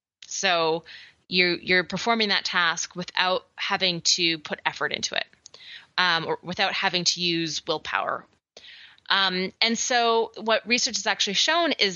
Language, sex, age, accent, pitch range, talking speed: English, female, 20-39, American, 175-225 Hz, 145 wpm